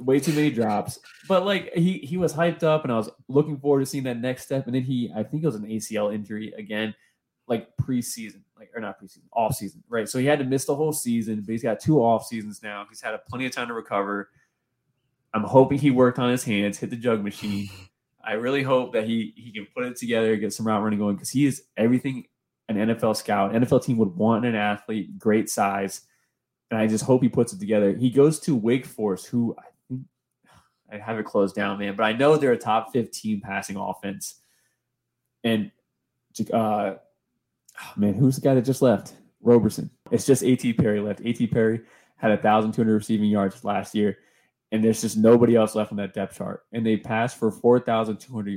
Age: 20-39